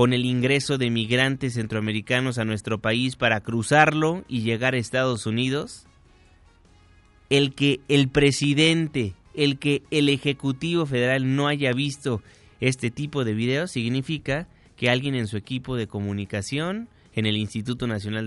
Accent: Mexican